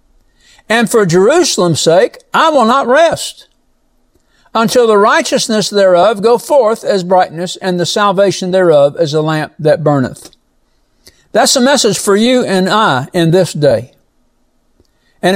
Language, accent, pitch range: English, American, 170-235 Hz